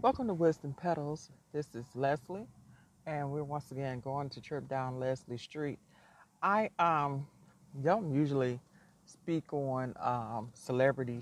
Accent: American